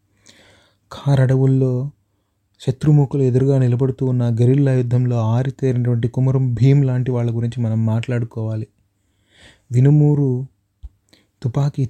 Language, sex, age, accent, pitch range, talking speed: Telugu, male, 30-49, native, 115-135 Hz, 85 wpm